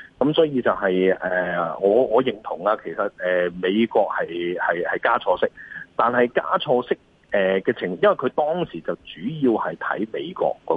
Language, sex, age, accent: Chinese, male, 30-49, native